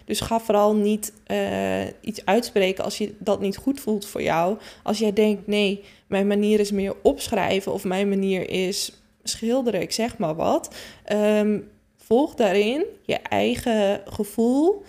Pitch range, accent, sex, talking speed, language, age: 195-225 Hz, Dutch, female, 155 wpm, Dutch, 20-39